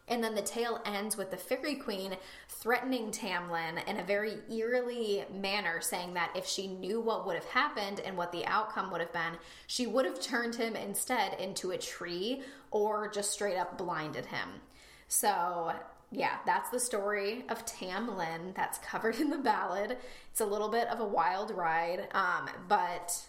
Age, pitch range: 10-29, 185-235 Hz